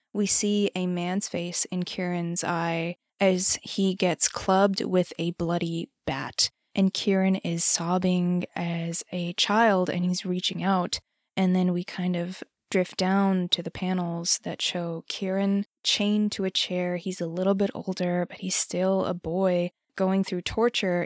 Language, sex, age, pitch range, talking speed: English, female, 20-39, 180-210 Hz, 160 wpm